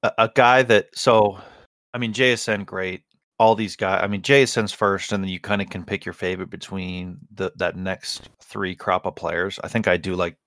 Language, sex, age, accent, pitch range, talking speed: English, male, 30-49, American, 95-115 Hz, 205 wpm